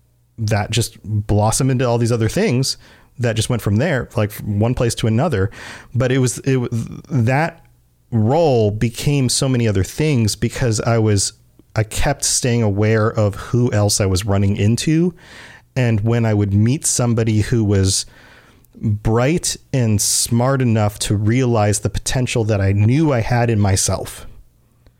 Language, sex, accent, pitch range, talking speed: English, male, American, 105-130 Hz, 160 wpm